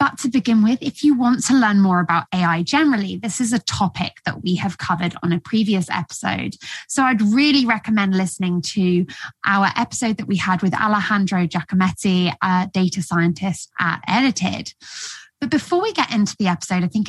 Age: 20-39